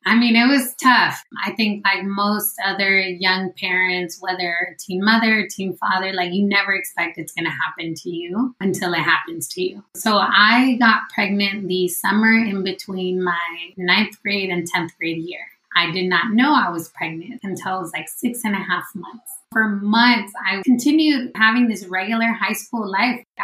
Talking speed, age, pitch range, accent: 185 wpm, 20-39, 190-240 Hz, American